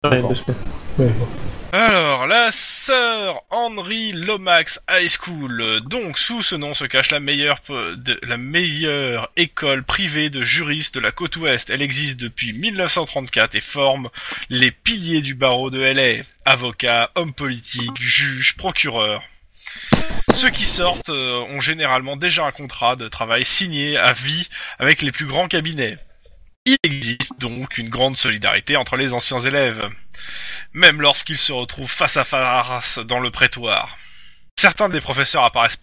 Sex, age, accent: male, 20-39, French